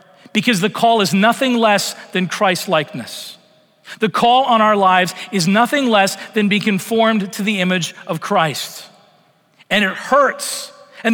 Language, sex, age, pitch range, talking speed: English, male, 40-59, 190-235 Hz, 150 wpm